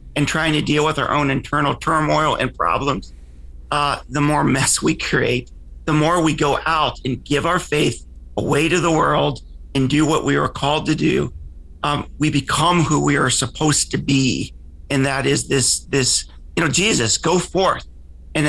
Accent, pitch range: American, 130-165 Hz